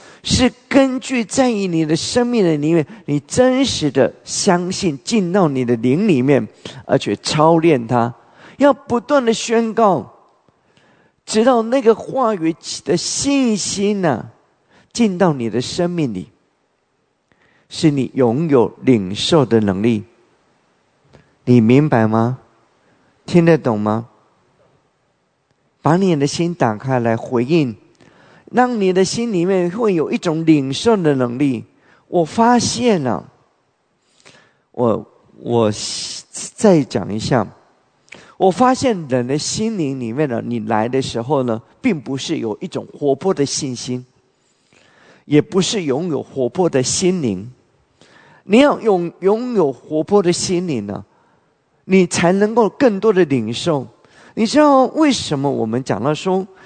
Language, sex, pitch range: English, male, 130-205 Hz